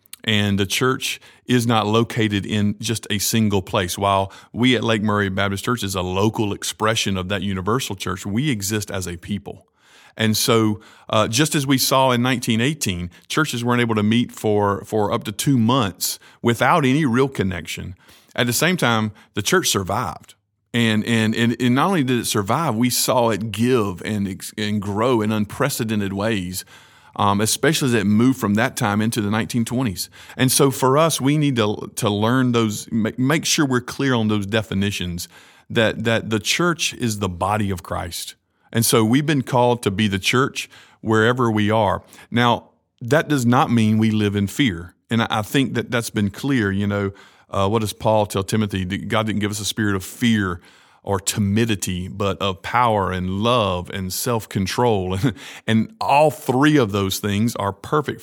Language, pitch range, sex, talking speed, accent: English, 100-120 Hz, male, 190 wpm, American